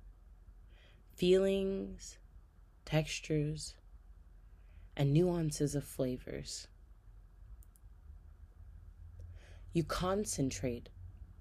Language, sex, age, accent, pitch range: English, female, 30-49, American, 85-135 Hz